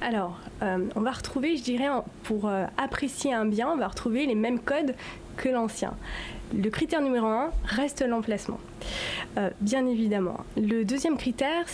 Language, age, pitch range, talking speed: French, 20-39, 215-265 Hz, 160 wpm